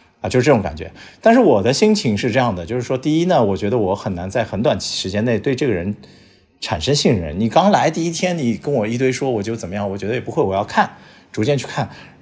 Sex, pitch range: male, 105-155 Hz